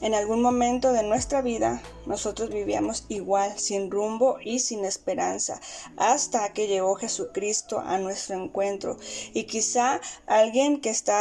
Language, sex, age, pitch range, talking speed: Spanish, female, 20-39, 205-245 Hz, 140 wpm